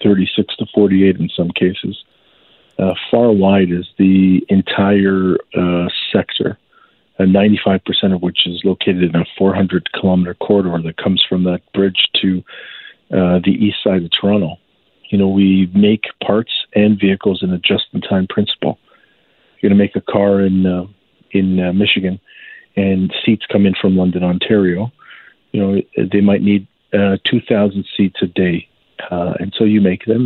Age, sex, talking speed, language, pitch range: 40-59, male, 160 wpm, English, 90-100 Hz